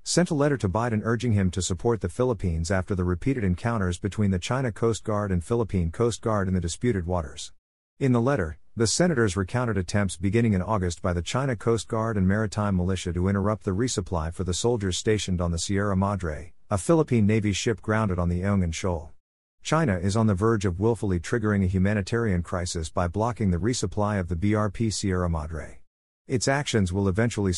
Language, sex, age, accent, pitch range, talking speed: English, male, 50-69, American, 90-115 Hz, 200 wpm